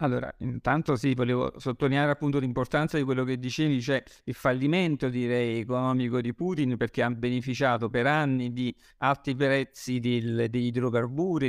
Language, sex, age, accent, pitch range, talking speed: Italian, male, 50-69, native, 115-135 Hz, 145 wpm